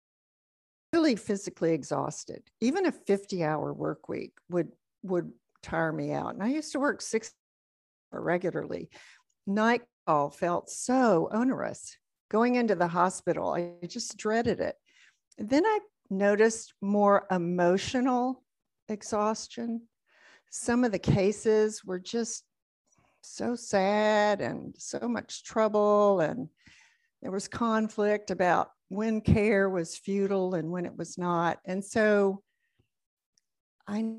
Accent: American